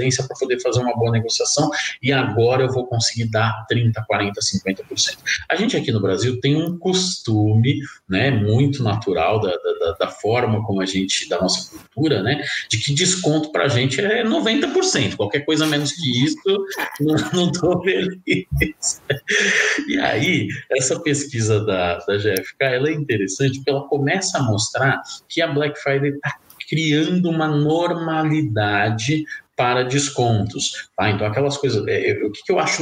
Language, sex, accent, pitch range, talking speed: Portuguese, male, Brazilian, 115-150 Hz, 160 wpm